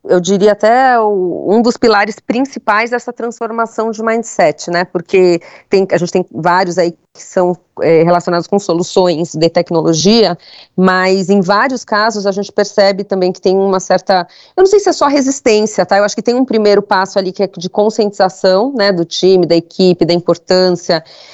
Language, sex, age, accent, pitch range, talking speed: English, female, 30-49, Brazilian, 185-230 Hz, 180 wpm